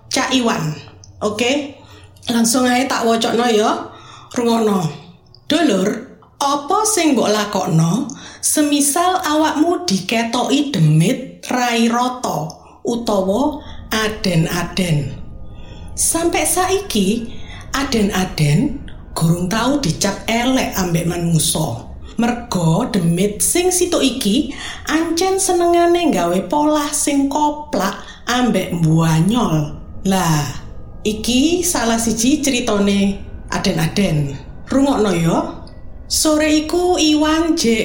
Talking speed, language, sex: 95 wpm, Indonesian, female